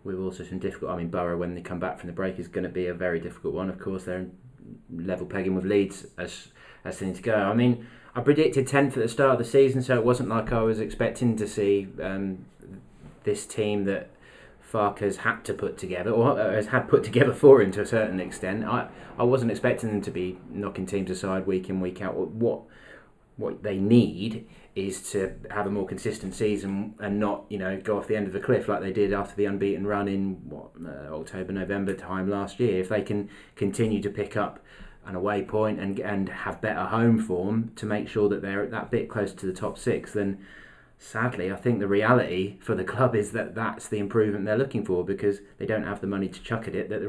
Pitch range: 95-110 Hz